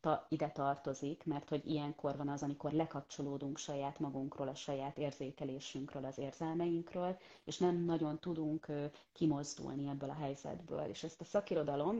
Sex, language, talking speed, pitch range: female, Hungarian, 140 wpm, 145-165 Hz